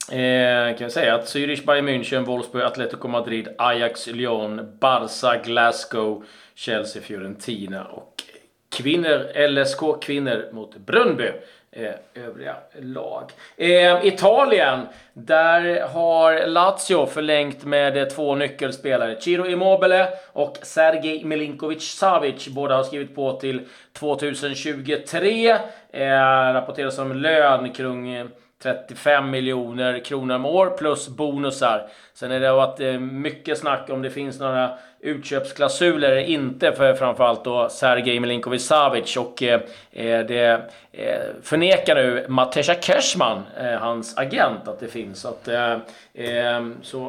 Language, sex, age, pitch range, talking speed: Swedish, male, 30-49, 125-150 Hz, 120 wpm